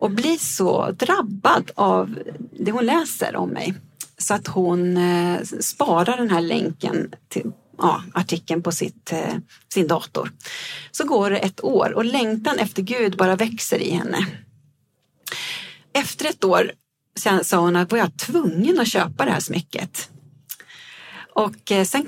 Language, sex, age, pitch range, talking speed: Swedish, female, 40-59, 180-230 Hz, 145 wpm